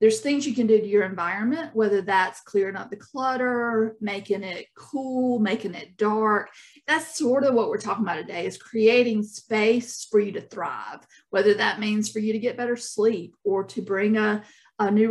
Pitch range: 205-245 Hz